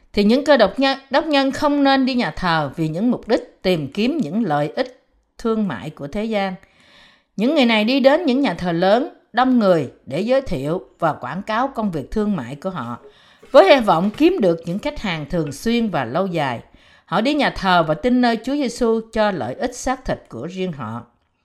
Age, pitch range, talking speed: 50-69, 165-240 Hz, 215 wpm